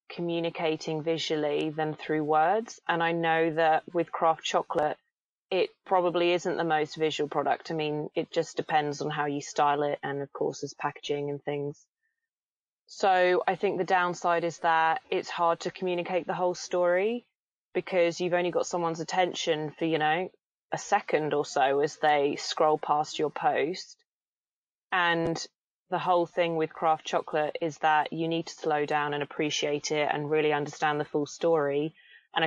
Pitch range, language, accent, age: 150-175 Hz, English, British, 20-39